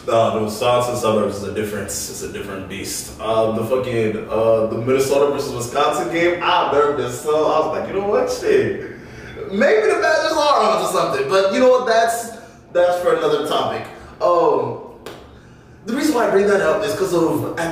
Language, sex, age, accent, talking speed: English, male, 20-39, American, 195 wpm